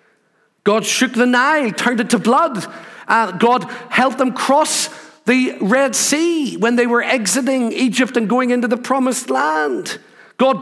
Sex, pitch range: male, 215-265 Hz